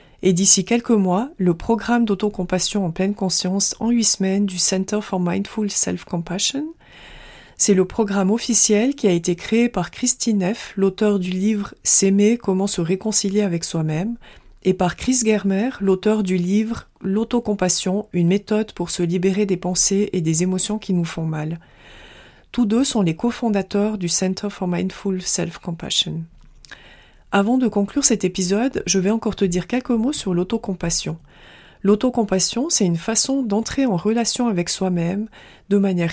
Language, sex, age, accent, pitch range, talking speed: French, female, 40-59, French, 185-225 Hz, 165 wpm